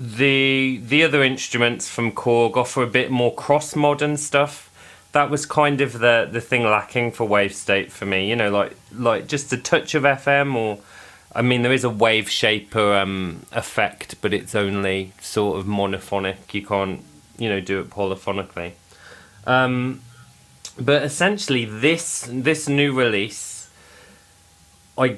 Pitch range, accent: 100-135 Hz, British